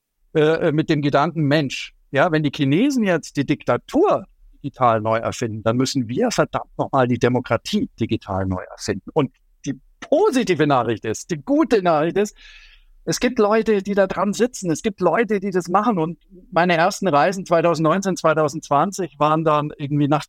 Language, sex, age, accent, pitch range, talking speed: German, male, 50-69, German, 135-170 Hz, 165 wpm